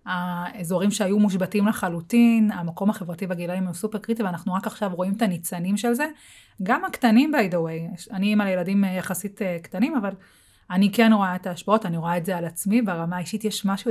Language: Hebrew